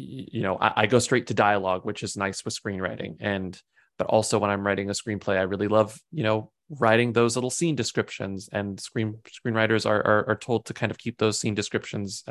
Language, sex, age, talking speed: English, male, 20-39, 220 wpm